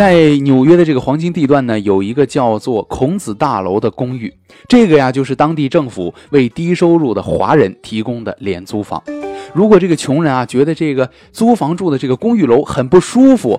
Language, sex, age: Chinese, male, 20-39